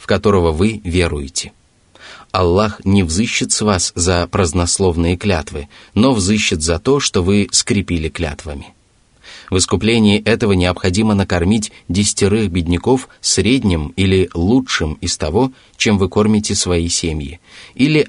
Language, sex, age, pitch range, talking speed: Russian, male, 20-39, 85-105 Hz, 125 wpm